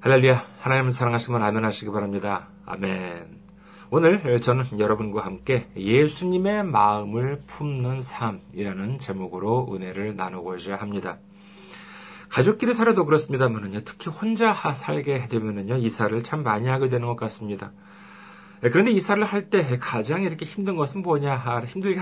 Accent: native